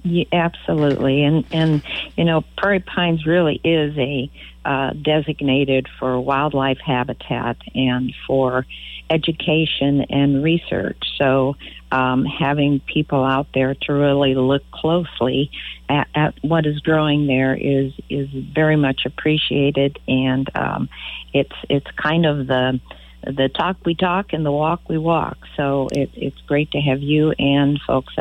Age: 50-69